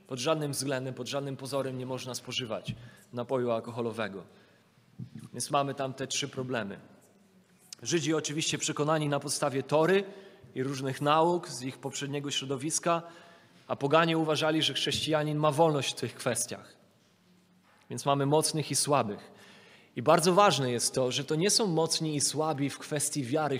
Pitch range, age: 140-180 Hz, 30-49